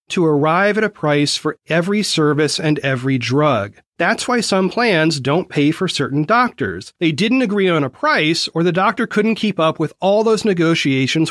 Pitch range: 145-205 Hz